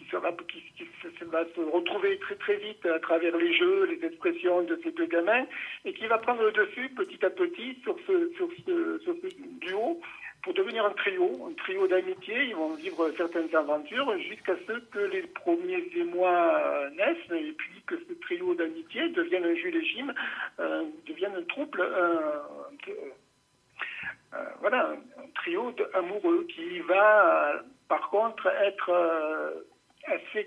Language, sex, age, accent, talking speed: French, male, 60-79, French, 160 wpm